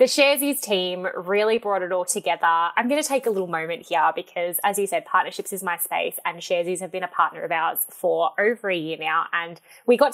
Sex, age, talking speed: female, 10-29, 235 wpm